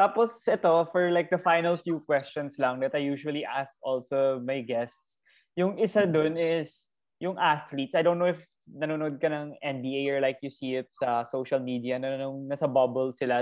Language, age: Filipino, 20-39